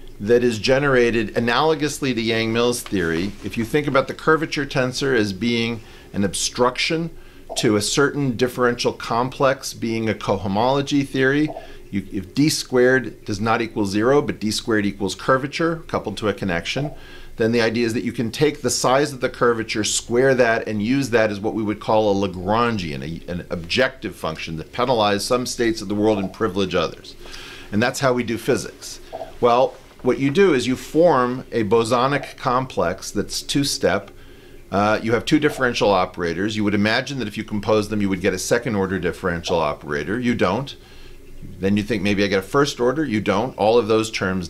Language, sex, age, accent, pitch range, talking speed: English, male, 40-59, American, 105-125 Hz, 190 wpm